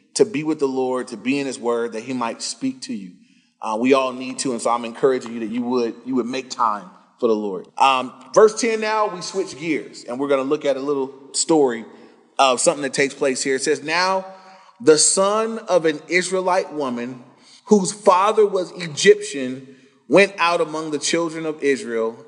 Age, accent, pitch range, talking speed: 30-49, American, 140-200 Hz, 210 wpm